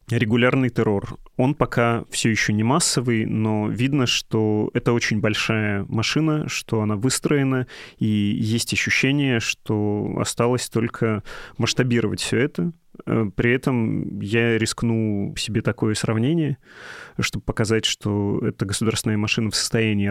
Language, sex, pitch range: Russian, male, 110-125 Hz